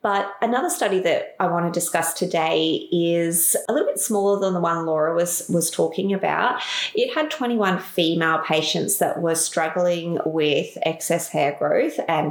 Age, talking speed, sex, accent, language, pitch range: 30-49, 170 wpm, female, Australian, English, 160-195 Hz